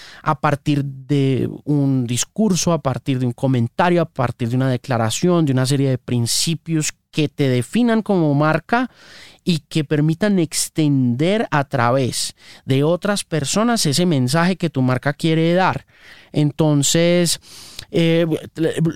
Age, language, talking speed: 30-49, Spanish, 135 wpm